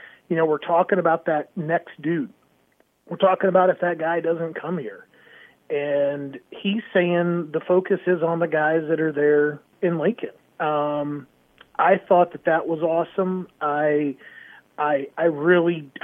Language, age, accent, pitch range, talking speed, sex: English, 30-49, American, 150-185 Hz, 155 wpm, male